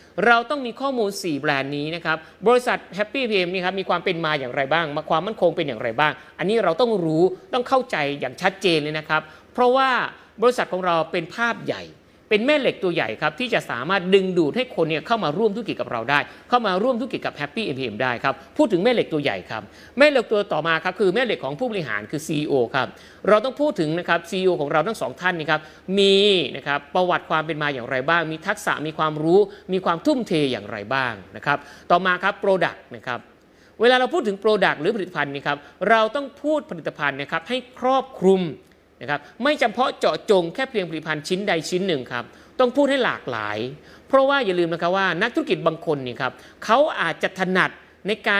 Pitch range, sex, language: 155-225 Hz, male, Thai